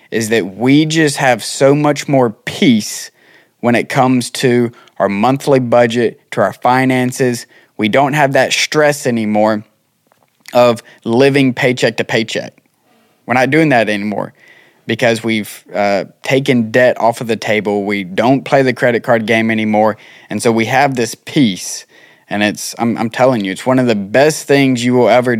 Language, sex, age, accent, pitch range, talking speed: English, male, 20-39, American, 115-145 Hz, 170 wpm